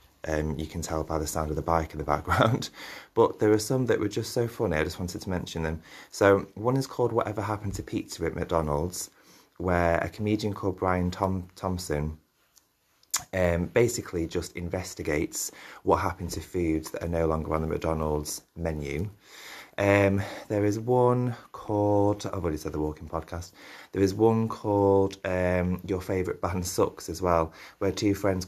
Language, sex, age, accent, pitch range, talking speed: English, male, 30-49, British, 80-100 Hz, 180 wpm